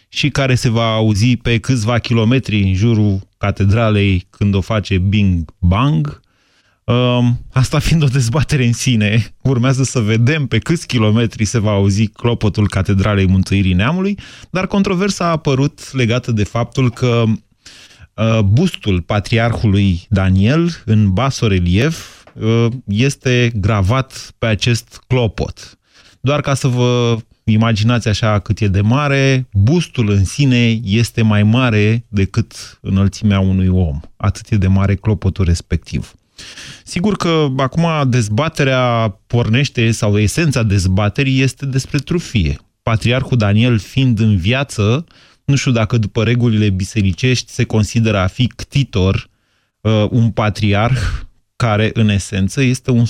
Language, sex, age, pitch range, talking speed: Romanian, male, 30-49, 100-125 Hz, 125 wpm